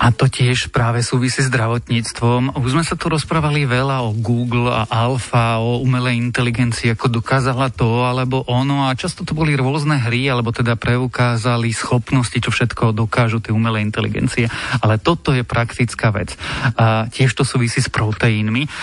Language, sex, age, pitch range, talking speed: Slovak, male, 40-59, 115-135 Hz, 165 wpm